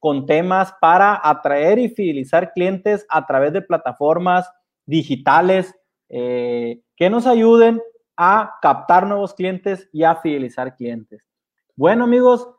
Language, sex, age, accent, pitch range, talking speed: Spanish, male, 30-49, Mexican, 165-215 Hz, 125 wpm